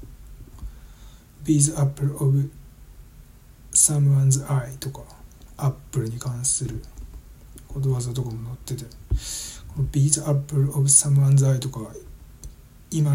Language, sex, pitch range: Japanese, male, 120-140 Hz